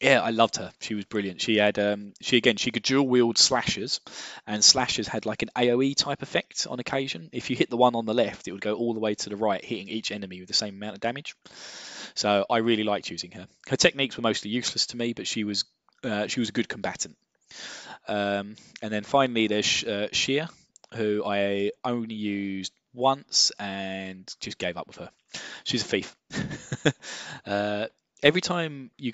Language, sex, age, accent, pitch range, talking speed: English, male, 10-29, British, 105-125 Hz, 205 wpm